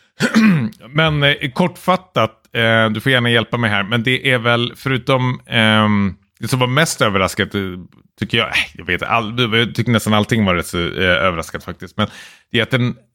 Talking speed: 145 wpm